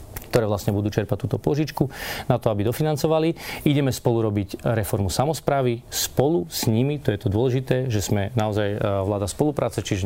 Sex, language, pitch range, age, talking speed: male, Slovak, 105-130 Hz, 40-59, 165 wpm